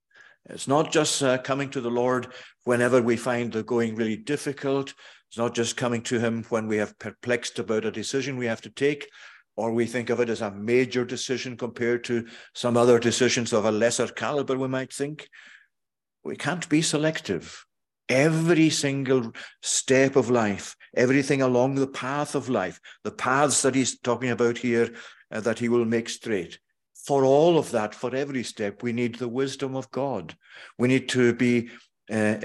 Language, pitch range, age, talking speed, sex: English, 115-135 Hz, 50-69, 185 wpm, male